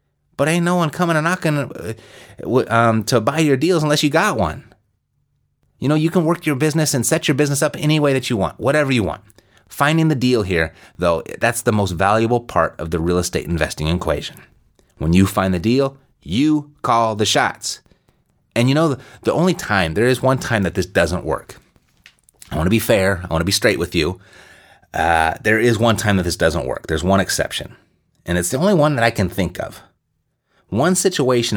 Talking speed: 215 wpm